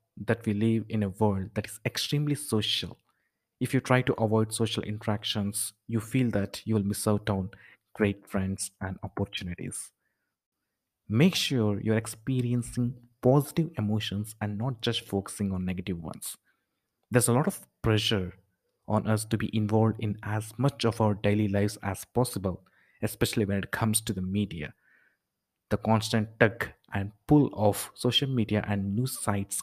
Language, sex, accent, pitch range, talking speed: English, male, Indian, 100-120 Hz, 160 wpm